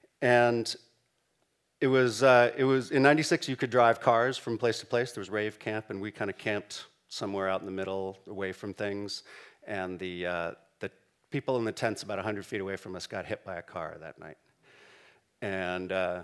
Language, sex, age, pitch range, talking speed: English, male, 40-59, 105-130 Hz, 205 wpm